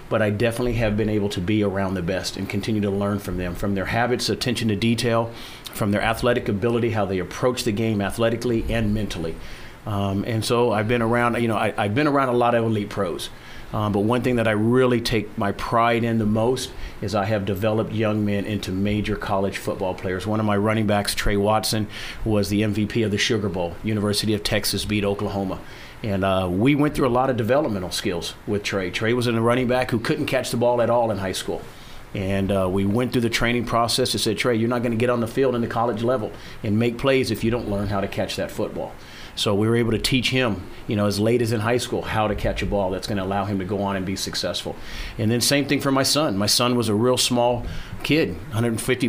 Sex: male